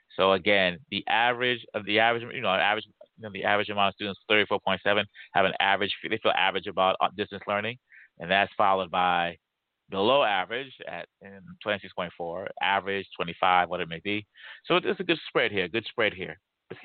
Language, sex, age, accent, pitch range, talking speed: English, male, 30-49, American, 95-115 Hz, 185 wpm